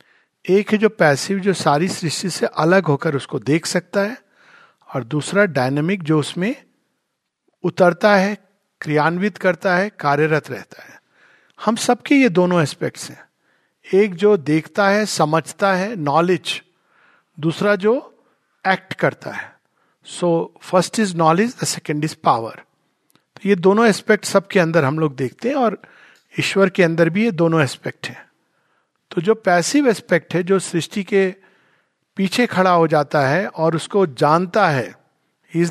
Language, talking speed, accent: Hindi, 150 wpm, native